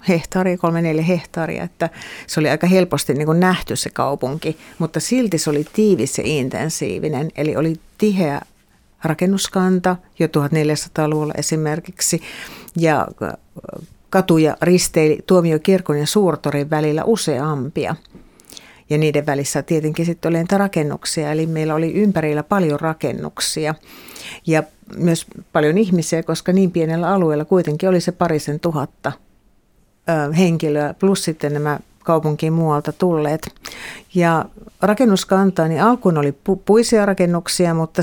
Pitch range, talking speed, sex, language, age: 155-180 Hz, 125 wpm, female, Finnish, 50-69